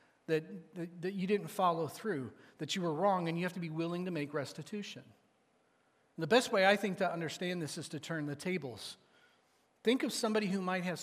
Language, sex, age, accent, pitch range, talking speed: English, male, 40-59, American, 155-190 Hz, 220 wpm